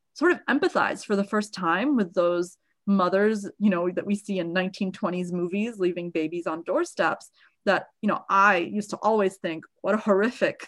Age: 20-39